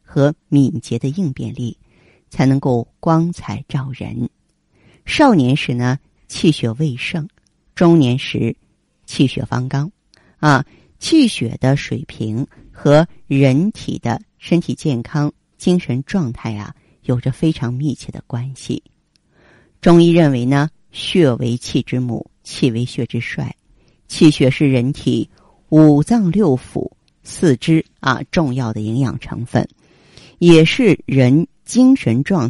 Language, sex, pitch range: Chinese, female, 125-170 Hz